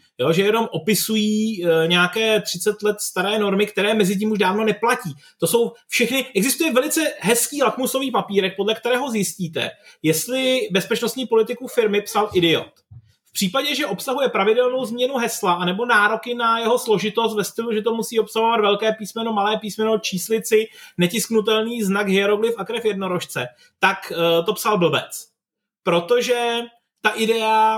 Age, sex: 30-49, male